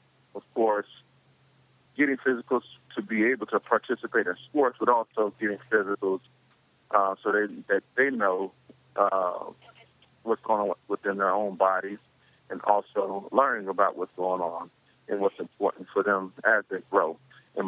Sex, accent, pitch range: male, American, 95-110 Hz